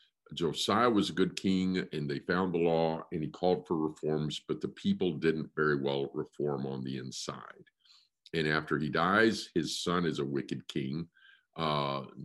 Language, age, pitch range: English, 50-69, 70-90 Hz